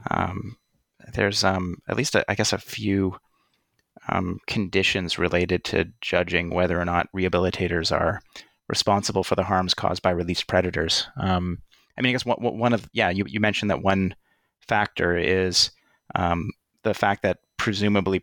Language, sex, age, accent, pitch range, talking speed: English, male, 30-49, American, 90-105 Hz, 165 wpm